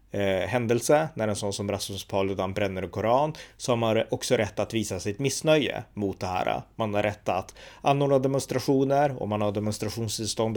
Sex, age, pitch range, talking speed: male, 30-49, 100-120 Hz, 175 wpm